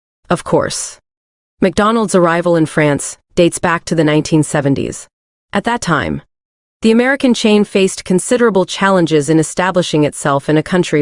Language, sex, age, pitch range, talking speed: English, female, 30-49, 155-190 Hz, 140 wpm